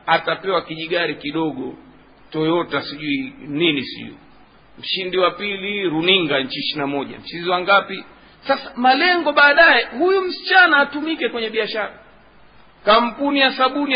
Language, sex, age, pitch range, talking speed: Swahili, male, 50-69, 185-275 Hz, 110 wpm